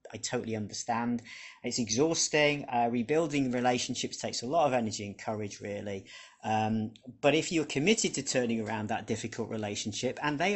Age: 40-59